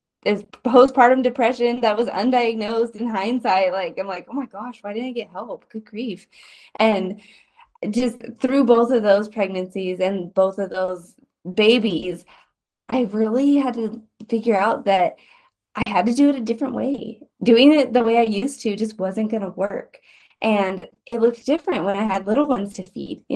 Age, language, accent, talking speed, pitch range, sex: 10-29, English, American, 185 wpm, 200-245 Hz, female